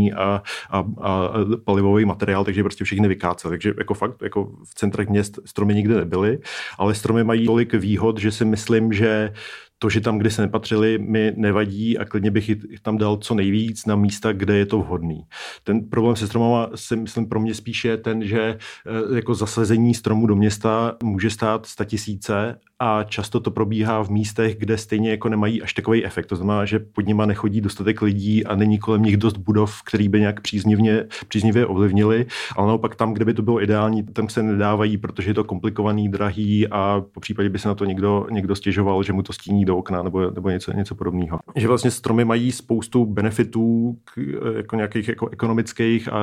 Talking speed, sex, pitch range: 195 wpm, male, 105-110 Hz